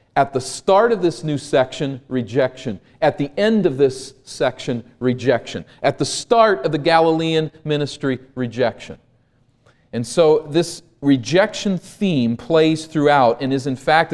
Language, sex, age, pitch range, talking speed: English, male, 40-59, 125-165 Hz, 145 wpm